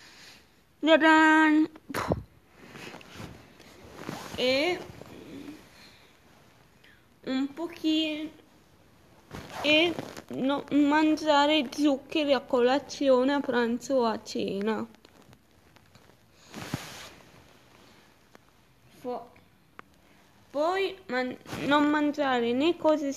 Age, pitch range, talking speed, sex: 20-39, 230-300 Hz, 55 wpm, female